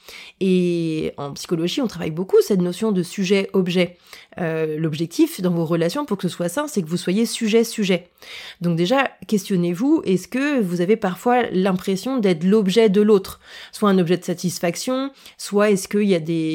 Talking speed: 180 wpm